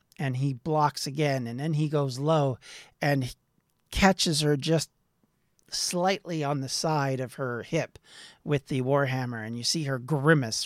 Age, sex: 40-59, male